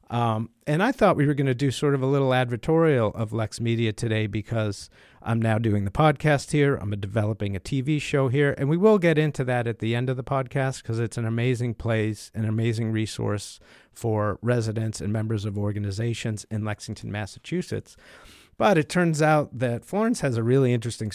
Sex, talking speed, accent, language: male, 200 wpm, American, English